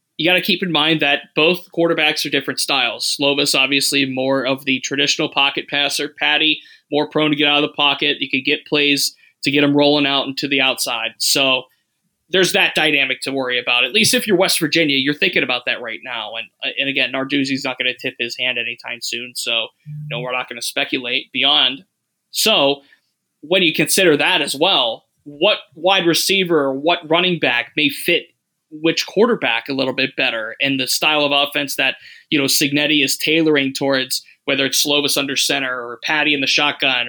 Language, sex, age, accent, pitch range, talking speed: English, male, 20-39, American, 140-165 Hz, 200 wpm